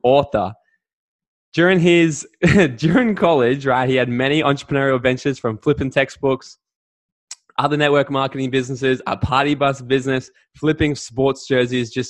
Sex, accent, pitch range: male, Australian, 115-140 Hz